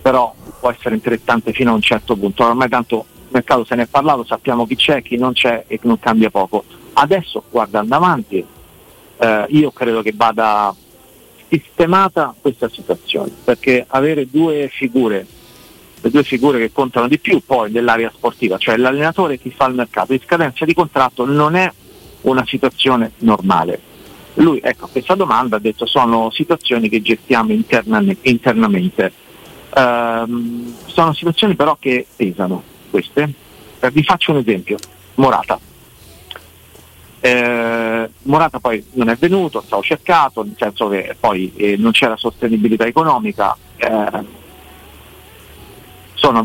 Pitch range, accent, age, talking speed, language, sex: 110-140 Hz, native, 50-69, 140 wpm, Italian, male